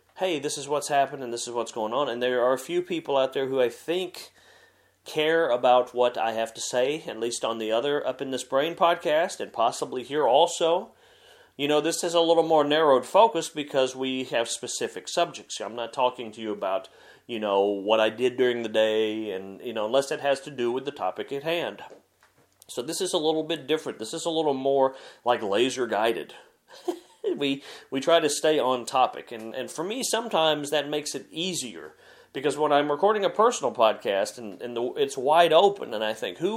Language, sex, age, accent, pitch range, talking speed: English, male, 40-59, American, 125-165 Hz, 215 wpm